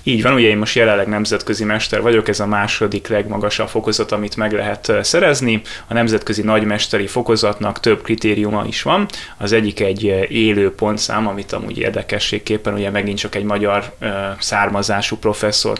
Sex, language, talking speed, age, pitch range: male, Hungarian, 155 wpm, 20-39, 100-110 Hz